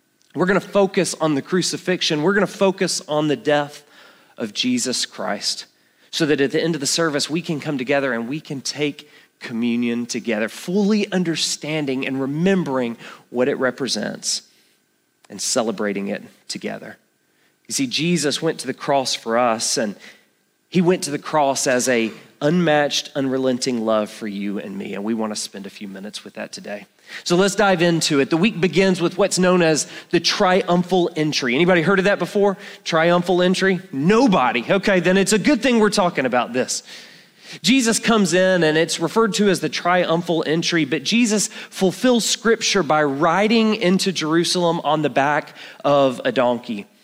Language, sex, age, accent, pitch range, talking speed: English, male, 30-49, American, 150-200 Hz, 175 wpm